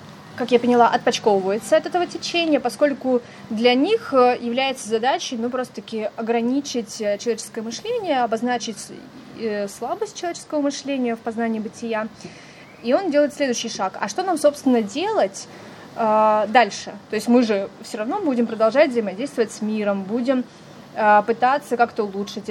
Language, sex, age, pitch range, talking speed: Russian, female, 20-39, 215-260 Hz, 135 wpm